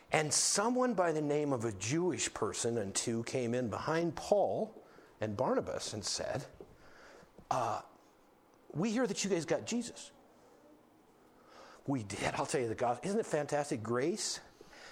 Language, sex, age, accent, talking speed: English, male, 50-69, American, 155 wpm